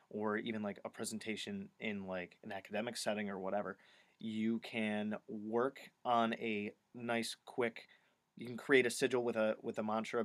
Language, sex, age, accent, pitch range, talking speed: English, male, 20-39, American, 110-120 Hz, 170 wpm